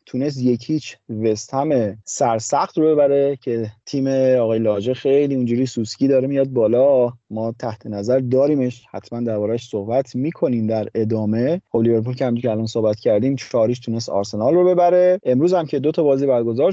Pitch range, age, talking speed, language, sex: 115-145 Hz, 30-49, 155 wpm, Persian, male